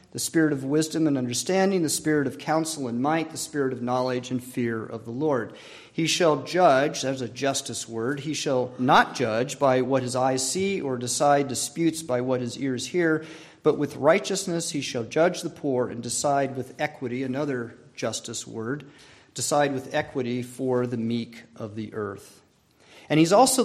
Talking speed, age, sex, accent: 185 wpm, 40-59, male, American